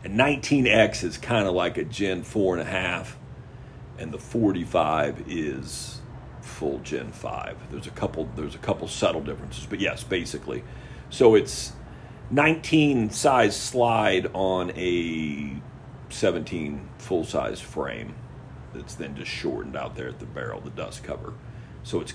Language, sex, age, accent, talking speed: English, male, 50-69, American, 145 wpm